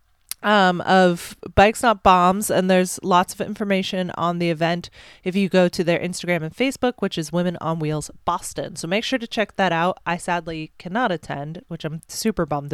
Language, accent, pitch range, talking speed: English, American, 165-225 Hz, 200 wpm